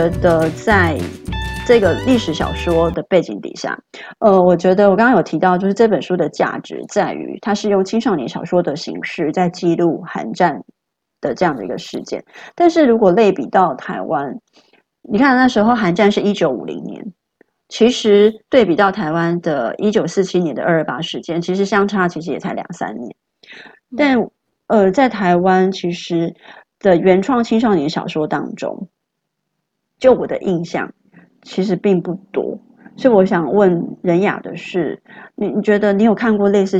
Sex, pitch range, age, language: female, 175-225 Hz, 30-49, Chinese